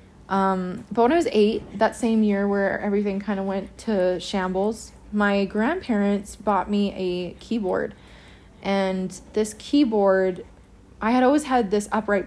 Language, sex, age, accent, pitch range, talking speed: English, female, 20-39, American, 185-220 Hz, 150 wpm